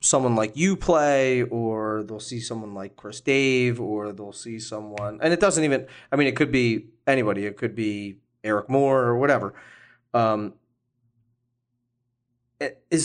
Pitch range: 110-130 Hz